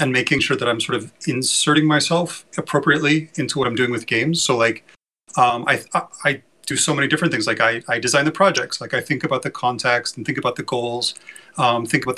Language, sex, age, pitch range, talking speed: English, male, 30-49, 120-145 Hz, 230 wpm